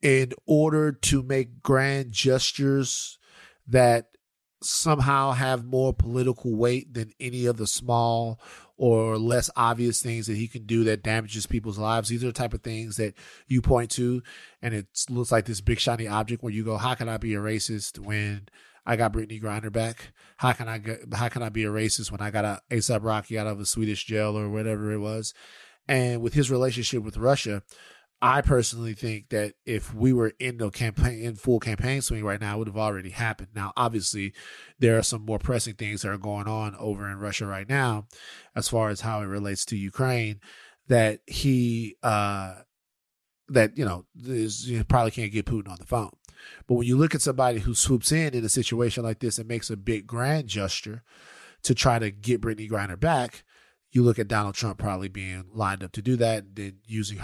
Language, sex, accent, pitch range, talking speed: English, male, American, 105-125 Hz, 205 wpm